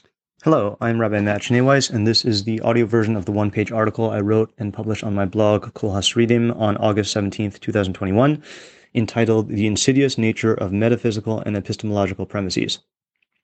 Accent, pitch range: American, 100-115 Hz